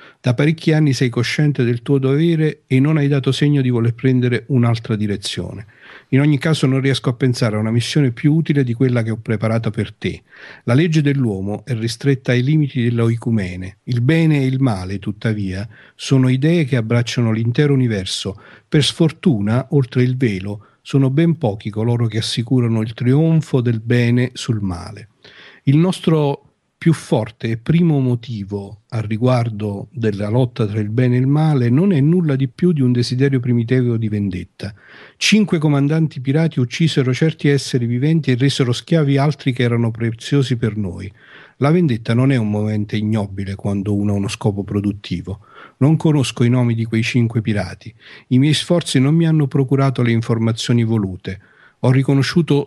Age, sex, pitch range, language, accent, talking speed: 50-69, male, 110-140 Hz, Italian, native, 170 wpm